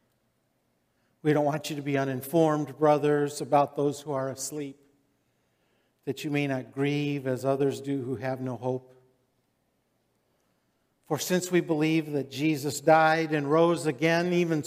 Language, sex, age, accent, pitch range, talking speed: English, male, 50-69, American, 135-160 Hz, 145 wpm